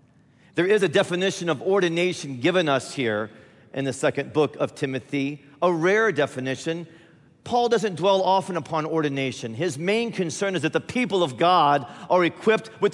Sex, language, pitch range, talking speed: male, English, 160-205 Hz, 165 wpm